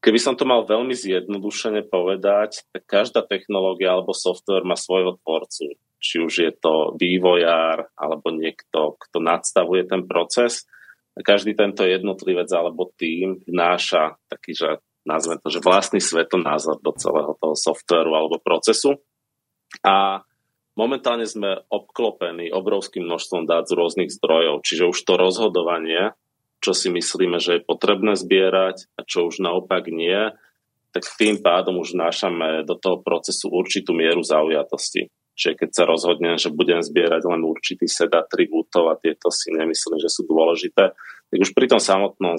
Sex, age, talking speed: male, 30-49, 145 wpm